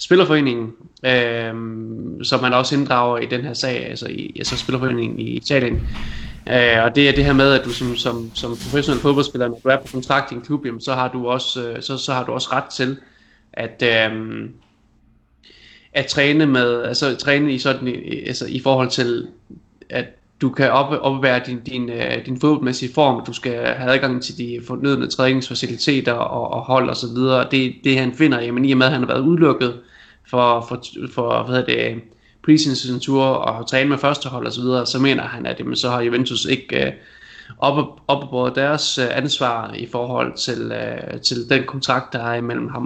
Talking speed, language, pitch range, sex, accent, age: 195 wpm, Danish, 120-140 Hz, male, native, 20-39